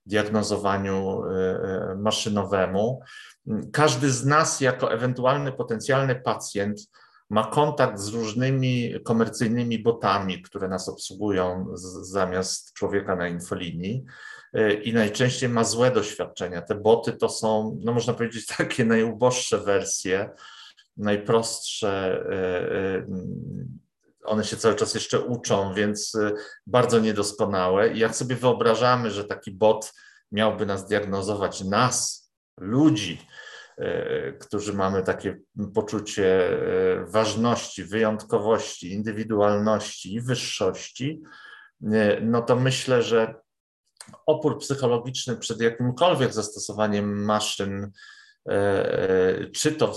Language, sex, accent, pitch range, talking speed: Polish, male, native, 105-125 Hz, 95 wpm